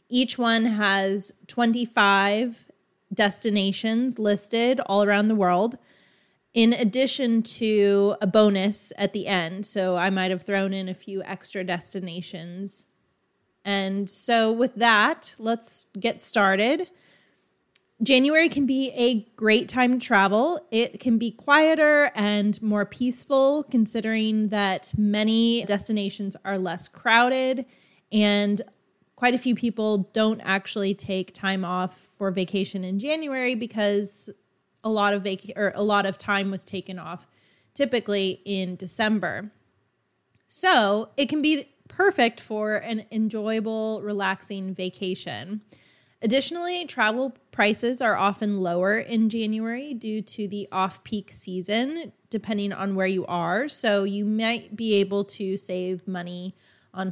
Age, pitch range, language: 20-39, 195-230 Hz, English